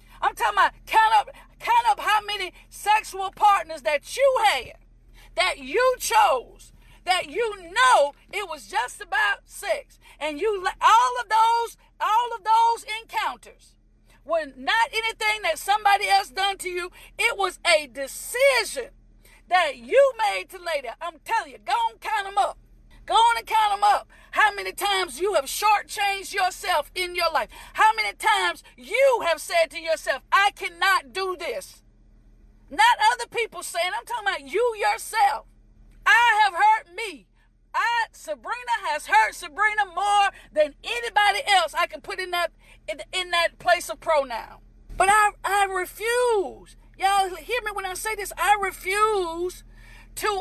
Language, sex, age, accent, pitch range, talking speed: English, female, 40-59, American, 345-440 Hz, 160 wpm